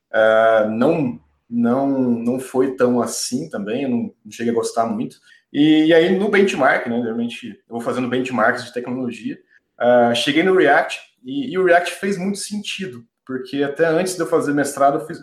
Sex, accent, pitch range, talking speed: male, Brazilian, 120-180 Hz, 195 wpm